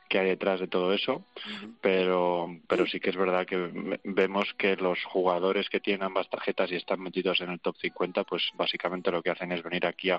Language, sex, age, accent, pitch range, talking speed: Spanish, male, 20-39, Spanish, 85-95 Hz, 220 wpm